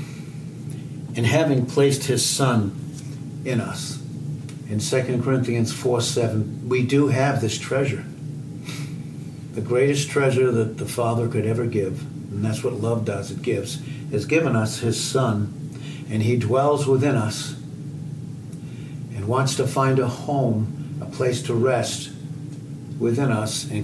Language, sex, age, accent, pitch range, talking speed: English, male, 60-79, American, 120-145 Hz, 140 wpm